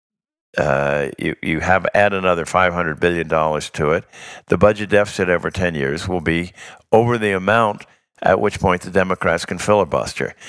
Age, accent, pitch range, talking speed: 50-69, American, 80-105 Hz, 165 wpm